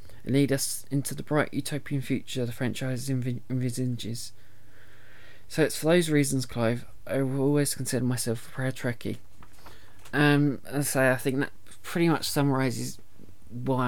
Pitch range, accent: 110-140 Hz, British